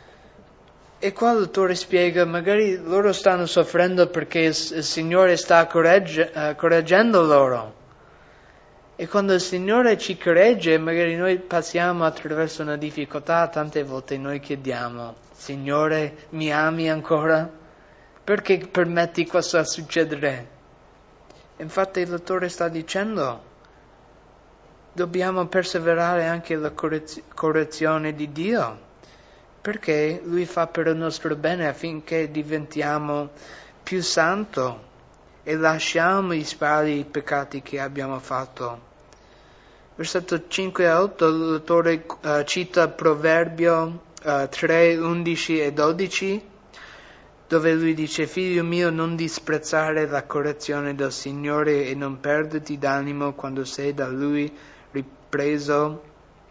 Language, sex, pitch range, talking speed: English, male, 150-175 Hz, 110 wpm